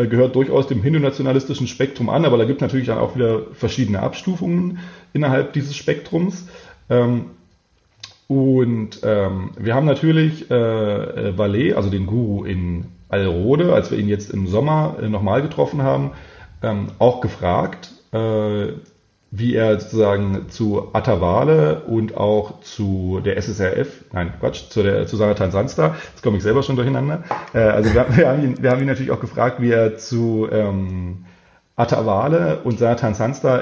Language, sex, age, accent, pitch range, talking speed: German, male, 30-49, German, 100-130 Hz, 145 wpm